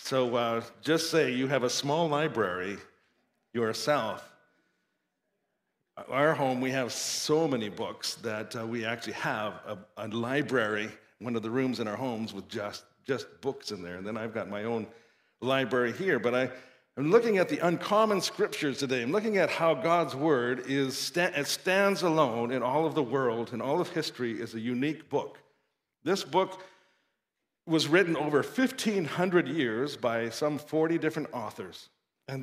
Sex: male